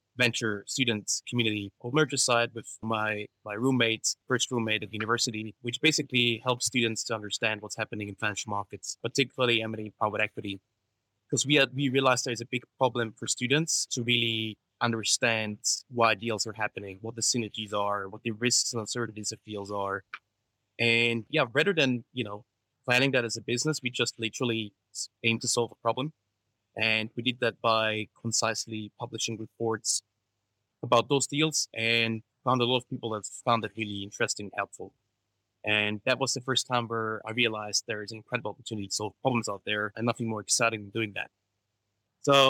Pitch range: 105-125 Hz